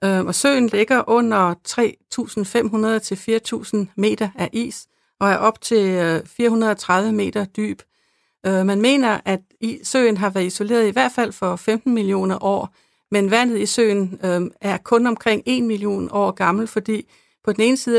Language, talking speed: Danish, 150 wpm